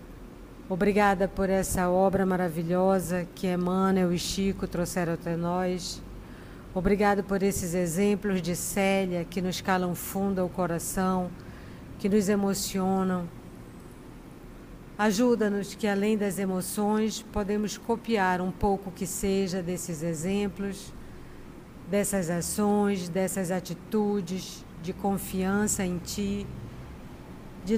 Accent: Brazilian